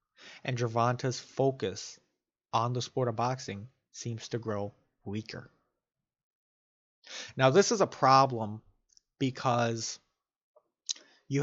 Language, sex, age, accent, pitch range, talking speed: English, male, 30-49, American, 110-135 Hz, 100 wpm